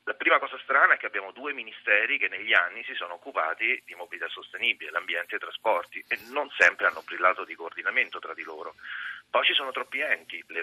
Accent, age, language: native, 40-59, Italian